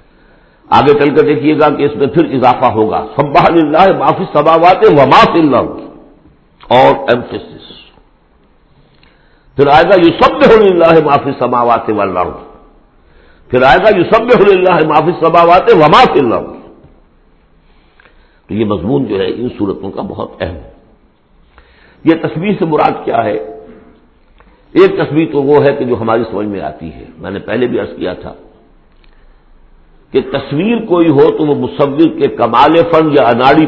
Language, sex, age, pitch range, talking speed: Urdu, male, 60-79, 125-180 Hz, 165 wpm